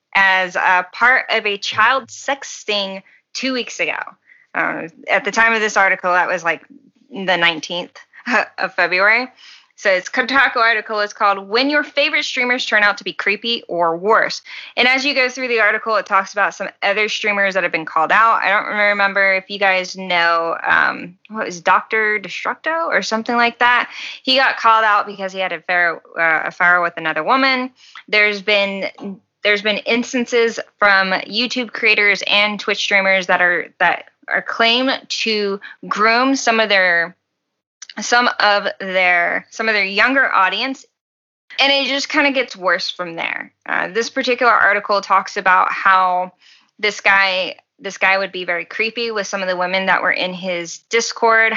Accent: American